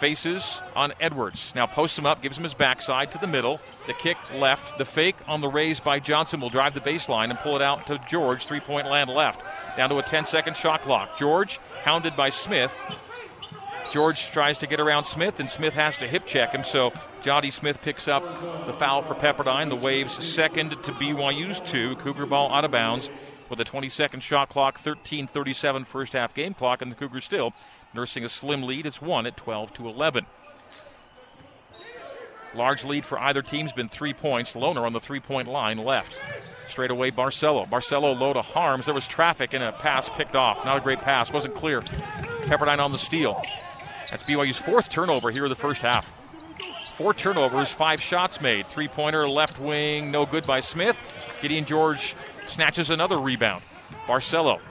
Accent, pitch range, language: American, 135-150 Hz, English